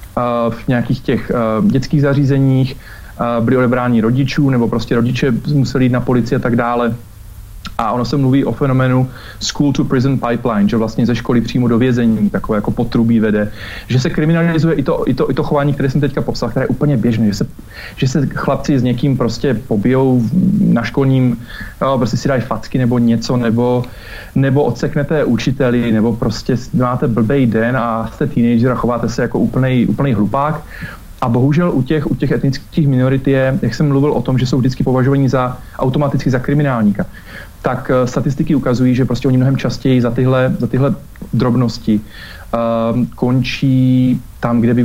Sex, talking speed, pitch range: male, 180 wpm, 115-140 Hz